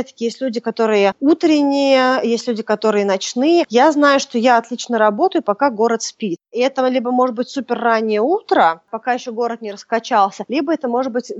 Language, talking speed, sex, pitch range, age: Russian, 180 wpm, female, 215-260 Hz, 20-39